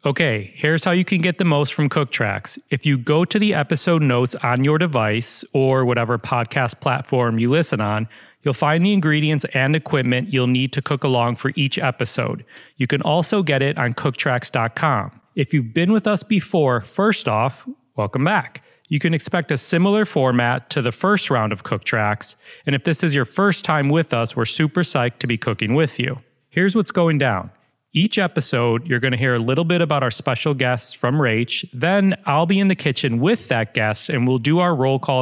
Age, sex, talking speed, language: 30-49, male, 205 wpm, English